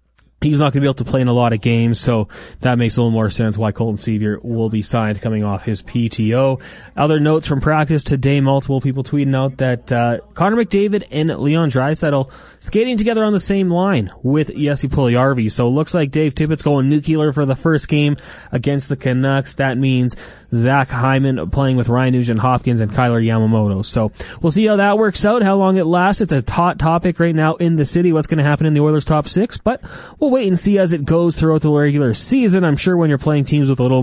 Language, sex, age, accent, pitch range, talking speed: English, male, 20-39, American, 120-170 Hz, 235 wpm